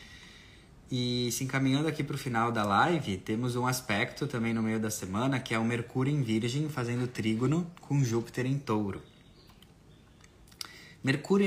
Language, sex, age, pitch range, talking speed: Portuguese, male, 20-39, 105-135 Hz, 155 wpm